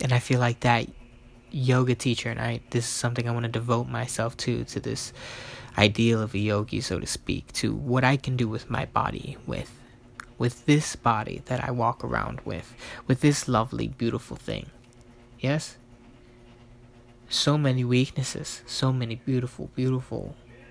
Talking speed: 165 wpm